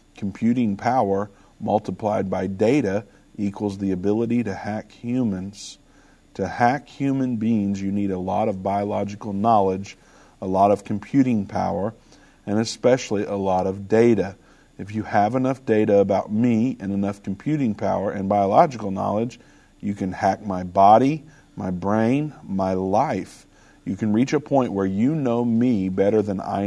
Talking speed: 155 wpm